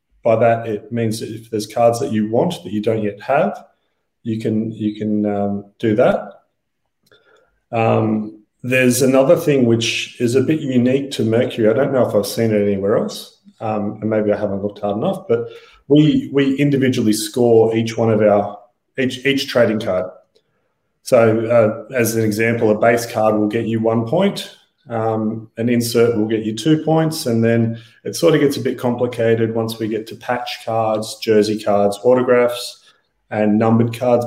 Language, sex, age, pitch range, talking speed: English, male, 30-49, 105-125 Hz, 185 wpm